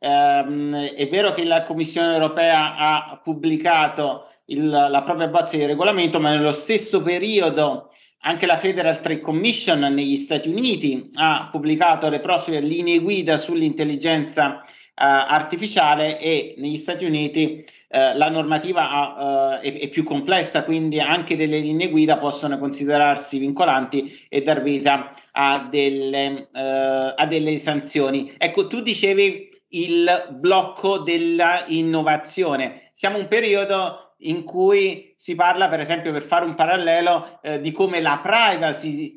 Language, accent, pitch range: Italian, native, 145-185 Hz